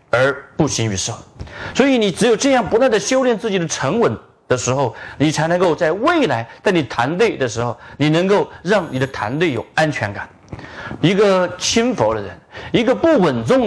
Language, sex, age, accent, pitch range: Chinese, male, 40-59, native, 130-215 Hz